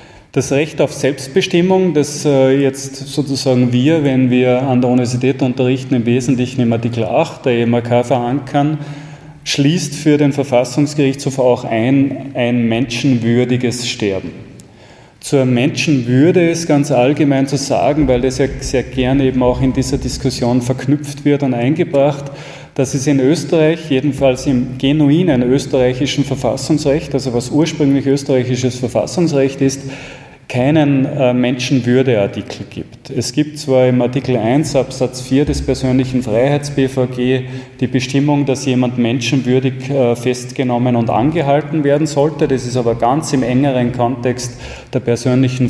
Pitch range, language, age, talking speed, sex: 125-145 Hz, German, 30-49, 130 wpm, male